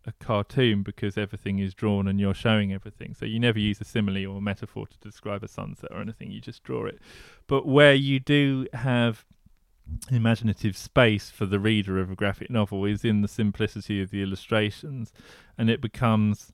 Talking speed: 190 wpm